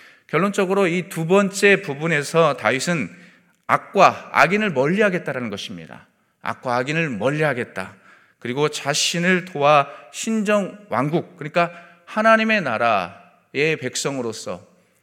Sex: male